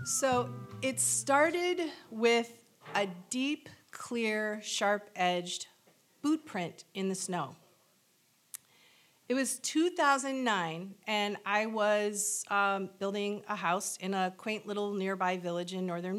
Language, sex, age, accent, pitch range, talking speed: English, female, 40-59, American, 185-225 Hz, 110 wpm